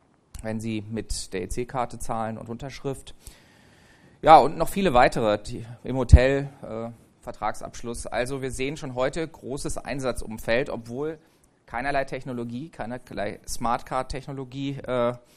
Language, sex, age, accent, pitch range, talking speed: German, male, 30-49, German, 115-140 Hz, 120 wpm